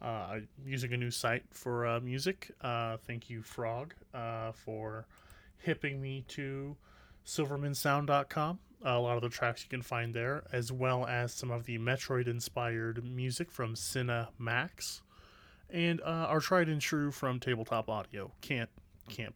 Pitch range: 115-145 Hz